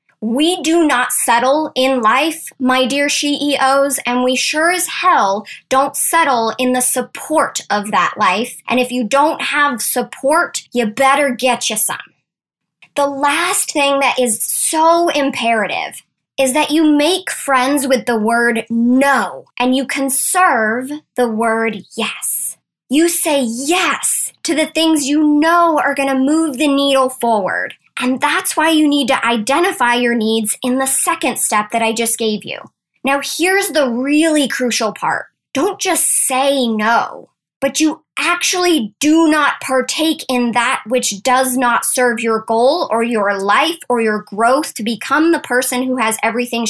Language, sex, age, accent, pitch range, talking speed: English, male, 10-29, American, 235-300 Hz, 160 wpm